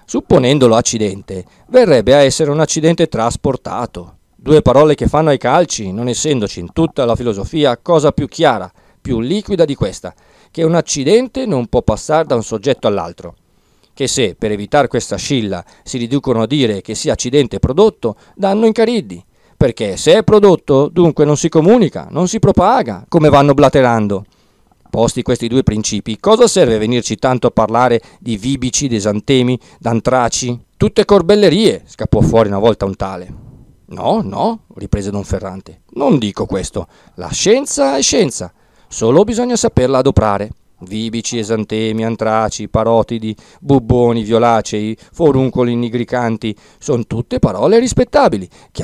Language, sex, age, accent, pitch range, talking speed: Italian, male, 40-59, native, 110-160 Hz, 145 wpm